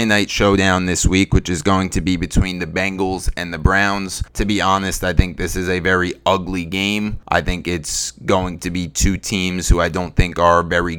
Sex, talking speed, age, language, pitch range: male, 220 wpm, 30-49, English, 90-100 Hz